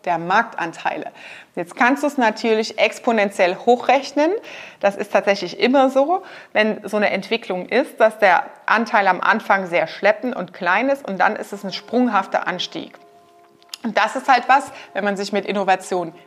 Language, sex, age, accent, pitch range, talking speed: German, female, 30-49, German, 190-250 Hz, 170 wpm